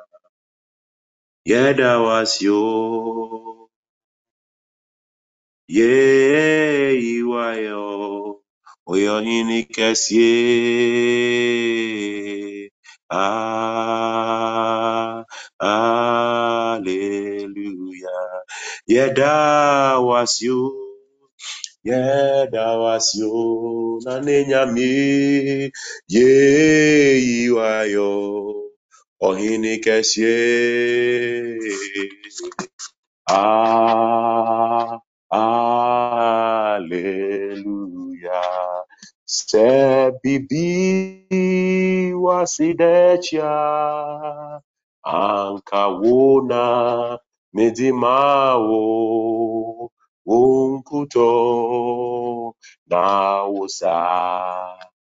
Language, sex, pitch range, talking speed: English, male, 105-135 Hz, 40 wpm